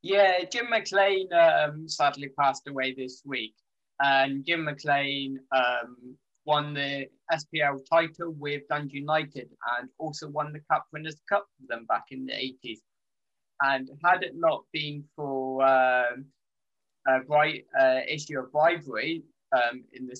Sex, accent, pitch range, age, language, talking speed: male, British, 125-150 Hz, 20-39, English, 145 wpm